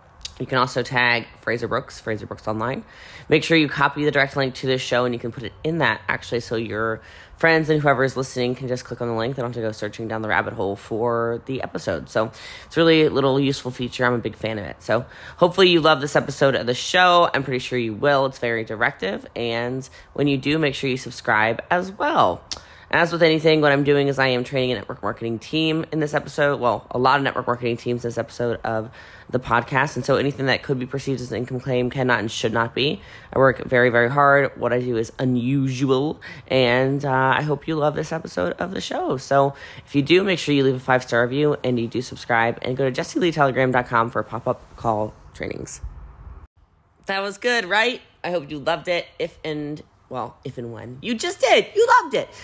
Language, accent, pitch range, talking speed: English, American, 120-150 Hz, 235 wpm